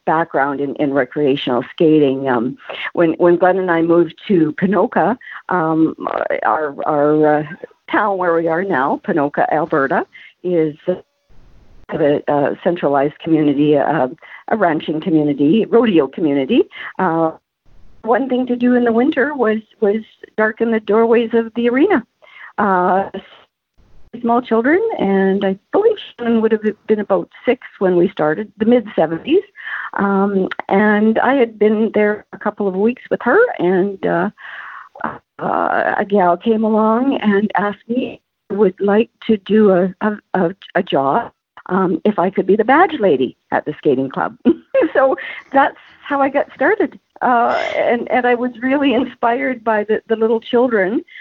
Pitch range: 170-230 Hz